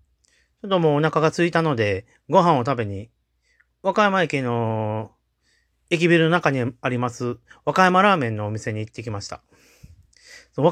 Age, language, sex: 40-59, Japanese, male